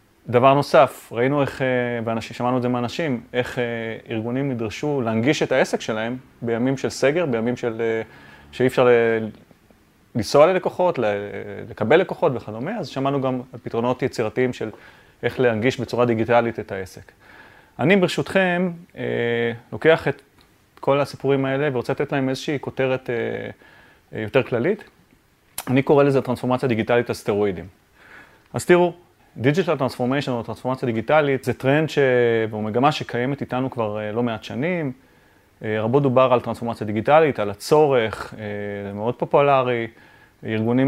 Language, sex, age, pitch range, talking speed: Hebrew, male, 30-49, 115-135 Hz, 130 wpm